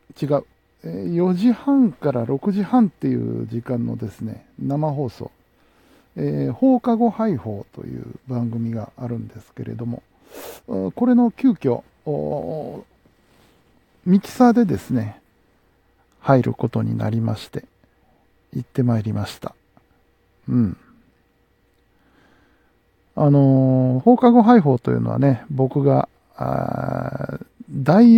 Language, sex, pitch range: Japanese, male, 115-185 Hz